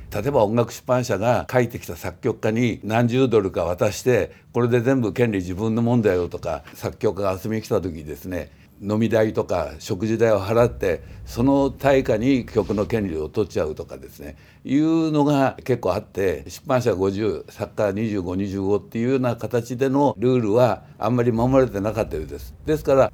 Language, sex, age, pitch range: Japanese, male, 60-79, 110-140 Hz